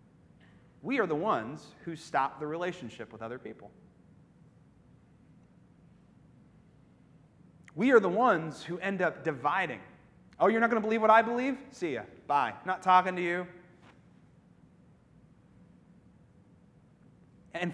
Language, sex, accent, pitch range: English, male, American, 170-235 Hz